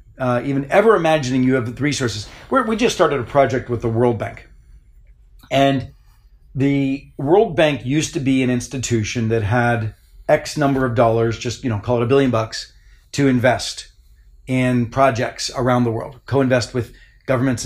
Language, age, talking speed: English, 40-59, 175 wpm